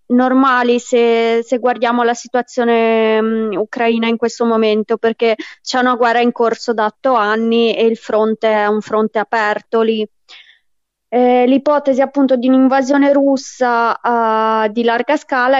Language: Italian